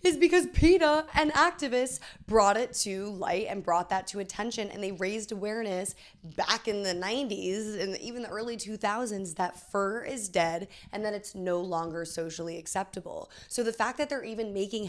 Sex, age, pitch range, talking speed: female, 20-39, 180-225 Hz, 180 wpm